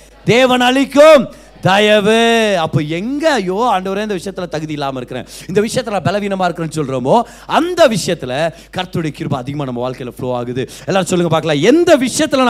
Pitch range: 175-280 Hz